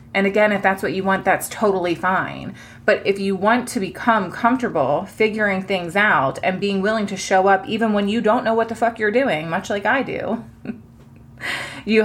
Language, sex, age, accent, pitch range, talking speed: English, female, 20-39, American, 185-235 Hz, 205 wpm